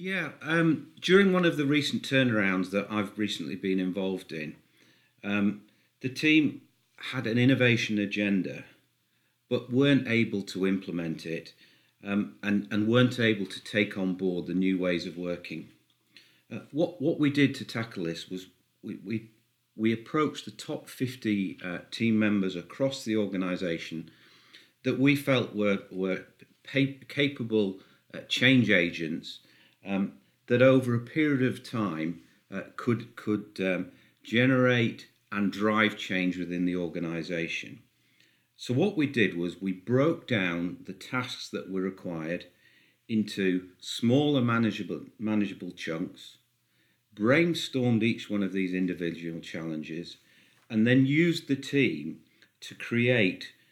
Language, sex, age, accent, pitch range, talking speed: English, male, 40-59, British, 95-125 Hz, 135 wpm